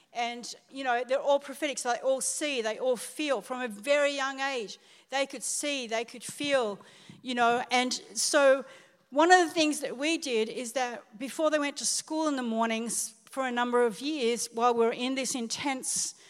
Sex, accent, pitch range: female, Australian, 215-260 Hz